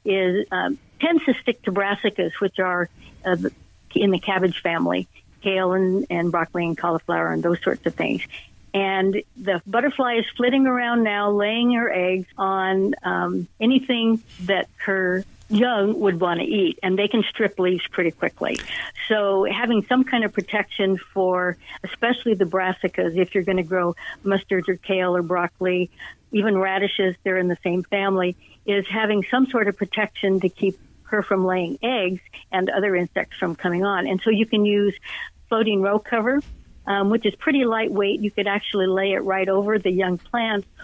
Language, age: English, 60-79